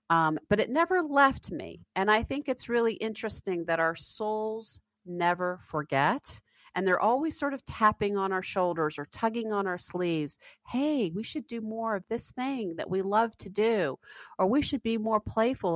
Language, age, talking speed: English, 50-69, 190 wpm